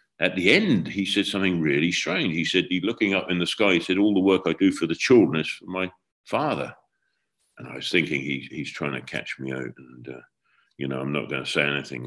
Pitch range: 70-85 Hz